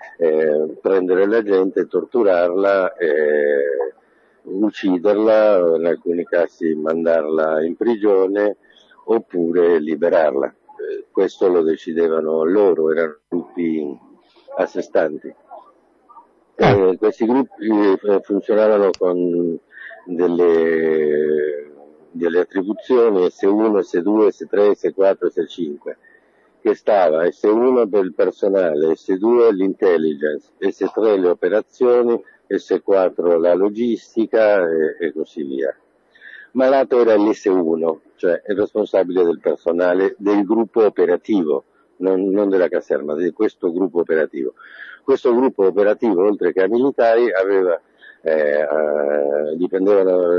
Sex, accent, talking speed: male, native, 100 wpm